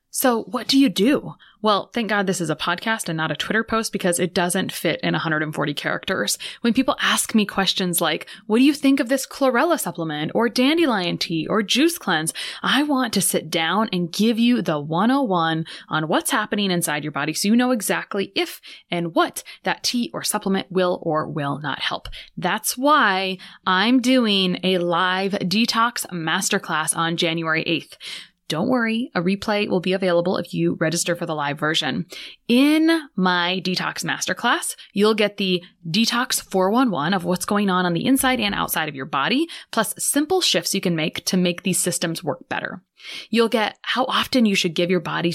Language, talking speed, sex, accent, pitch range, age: English, 190 wpm, female, American, 175-235 Hz, 20-39